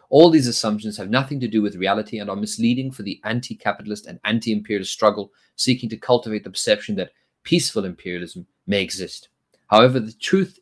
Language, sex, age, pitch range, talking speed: English, male, 30-49, 105-120 Hz, 175 wpm